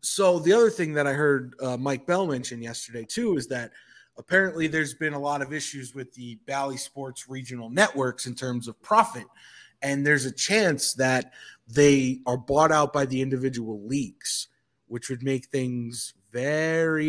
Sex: male